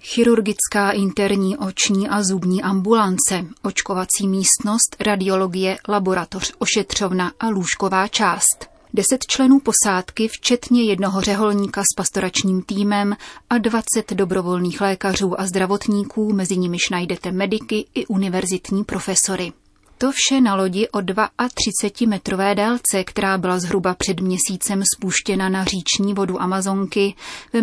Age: 30-49